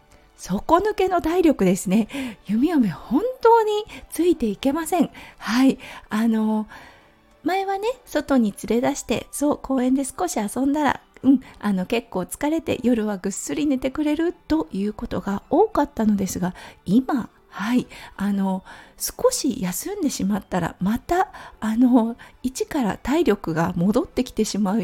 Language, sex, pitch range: Japanese, female, 210-290 Hz